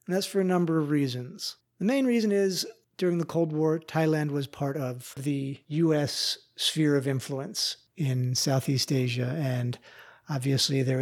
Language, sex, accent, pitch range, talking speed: English, male, American, 140-185 Hz, 165 wpm